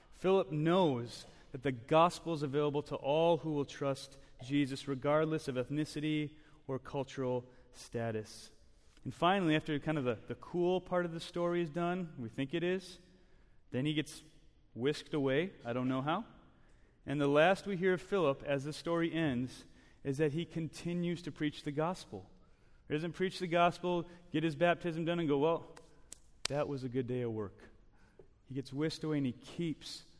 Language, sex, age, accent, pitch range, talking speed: English, male, 30-49, American, 130-170 Hz, 180 wpm